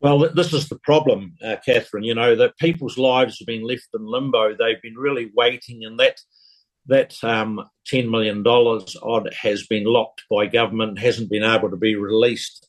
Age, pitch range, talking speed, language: 50-69, 105-130 Hz, 190 wpm, English